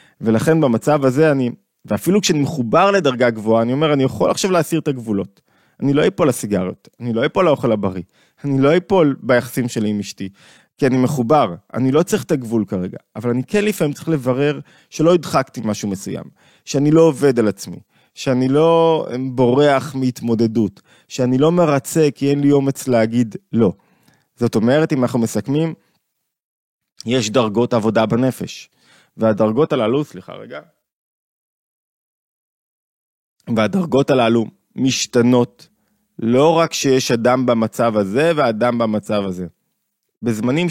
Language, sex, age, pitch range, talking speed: Hebrew, male, 20-39, 115-145 Hz, 140 wpm